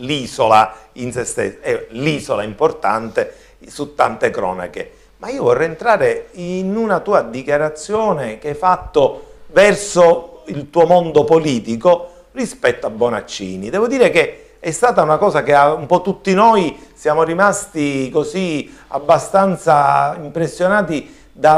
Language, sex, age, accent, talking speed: Italian, male, 50-69, native, 130 wpm